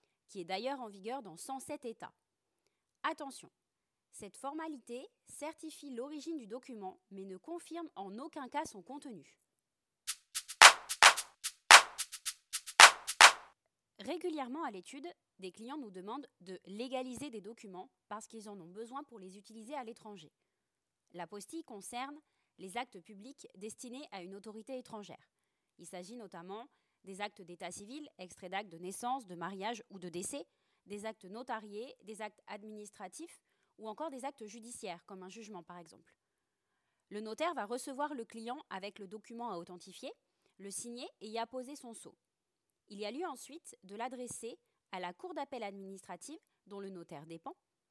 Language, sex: French, female